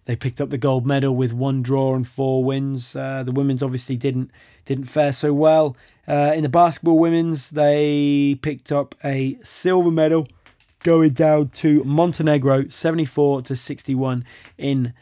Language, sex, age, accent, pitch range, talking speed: English, male, 20-39, British, 130-150 Hz, 160 wpm